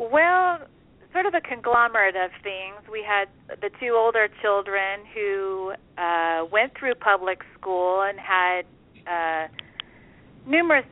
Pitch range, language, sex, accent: 180-230 Hz, English, female, American